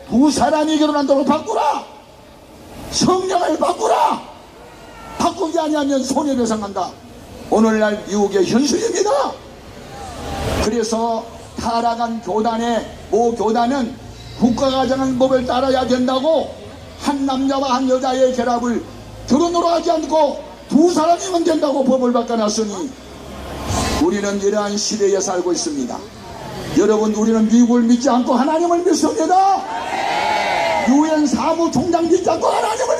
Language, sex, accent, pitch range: Korean, male, native, 230-310 Hz